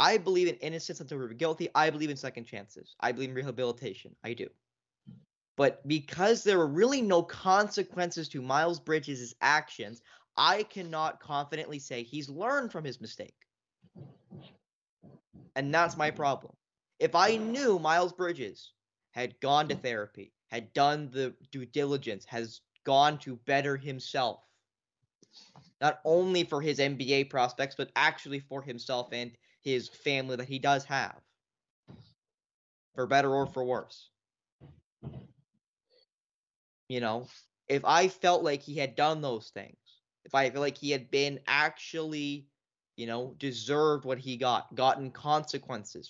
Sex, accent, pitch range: male, American, 130-165 Hz